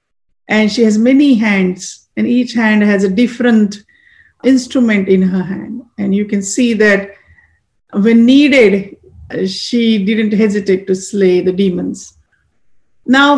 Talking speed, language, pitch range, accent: 135 wpm, English, 200-260 Hz, Indian